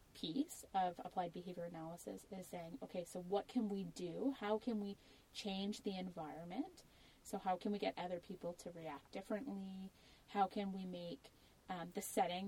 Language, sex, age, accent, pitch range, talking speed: English, female, 30-49, American, 180-220 Hz, 175 wpm